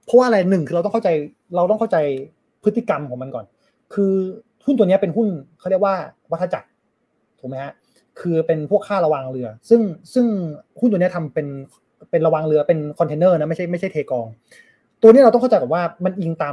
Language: Thai